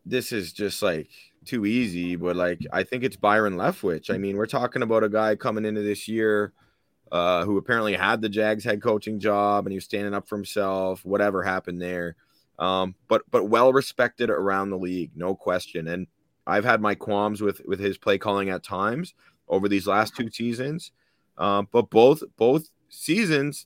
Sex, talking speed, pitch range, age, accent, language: male, 190 wpm, 95-120 Hz, 20-39, American, English